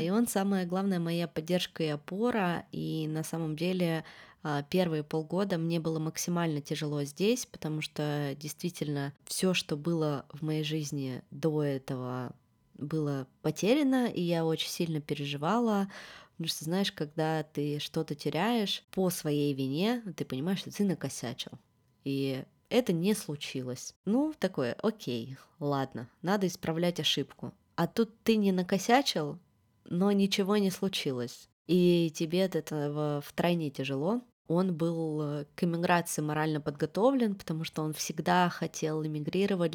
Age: 20-39